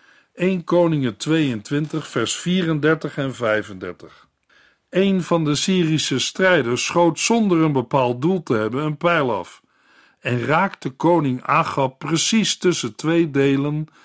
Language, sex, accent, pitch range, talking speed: Dutch, male, Dutch, 130-170 Hz, 130 wpm